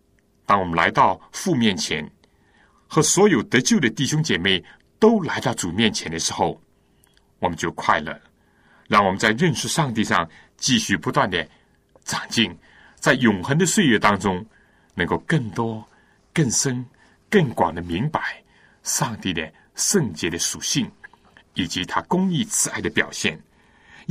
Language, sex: Chinese, male